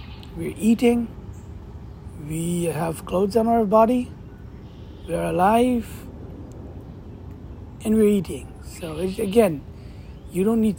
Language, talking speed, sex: English, 100 wpm, male